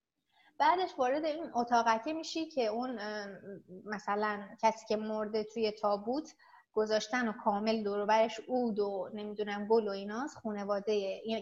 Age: 20-39